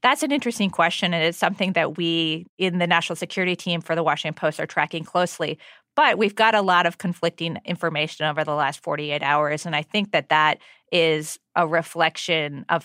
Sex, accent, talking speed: female, American, 200 wpm